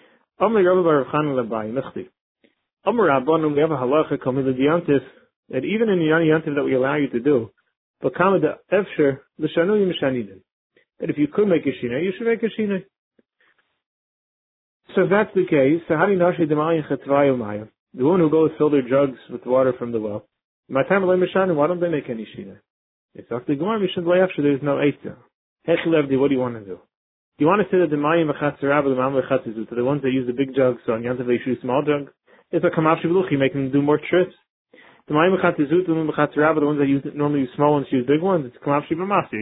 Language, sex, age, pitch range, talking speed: English, male, 30-49, 135-170 Hz, 160 wpm